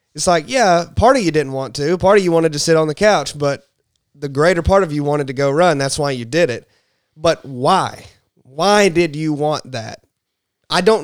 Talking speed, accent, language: 230 wpm, American, English